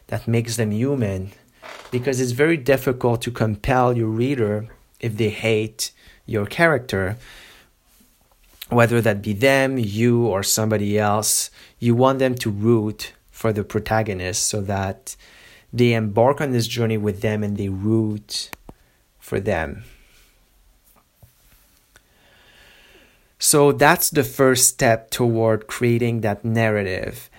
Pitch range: 110-125 Hz